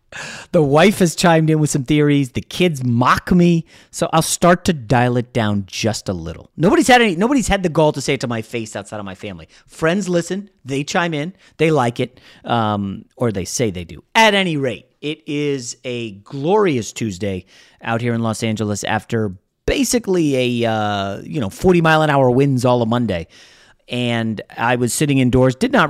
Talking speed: 200 wpm